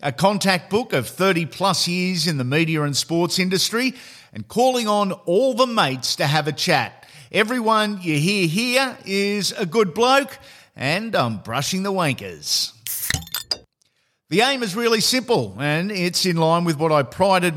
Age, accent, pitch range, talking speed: 50-69, Australian, 150-205 Hz, 165 wpm